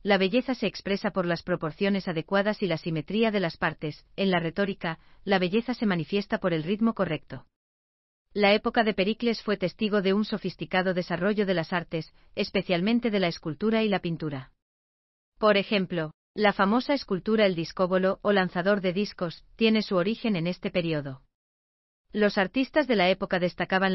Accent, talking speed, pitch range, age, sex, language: Spanish, 170 wpm, 165-210 Hz, 40-59, female, Spanish